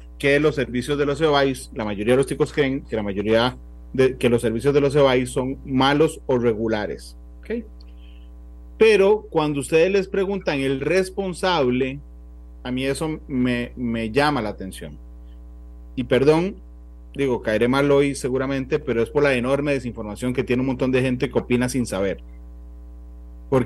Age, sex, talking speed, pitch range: 30-49, male, 160 wpm, 105-150 Hz